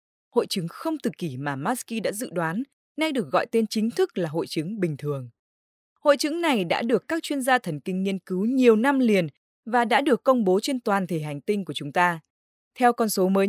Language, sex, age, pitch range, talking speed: Vietnamese, female, 20-39, 165-255 Hz, 235 wpm